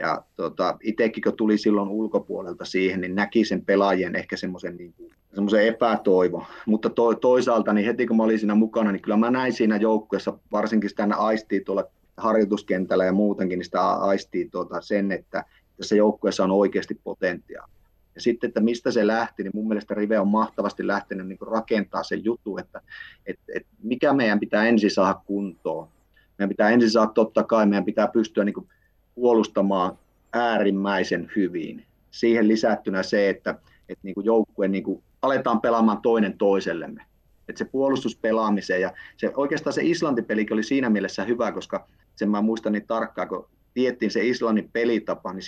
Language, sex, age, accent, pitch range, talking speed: Finnish, male, 30-49, native, 100-115 Hz, 170 wpm